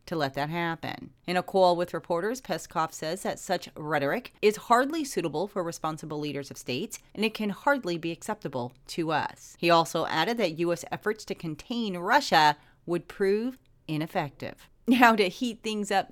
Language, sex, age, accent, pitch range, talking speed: English, female, 40-59, American, 160-210 Hz, 175 wpm